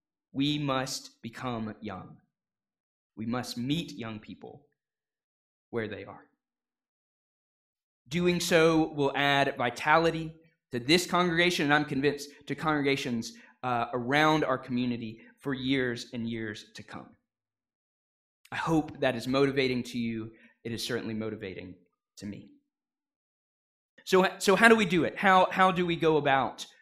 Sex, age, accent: male, 20-39, American